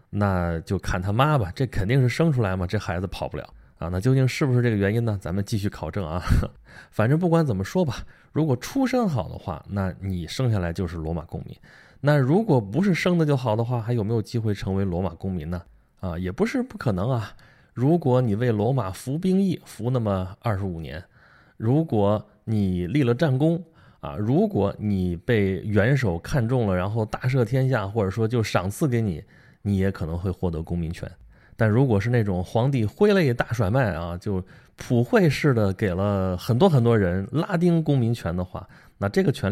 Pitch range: 95-130 Hz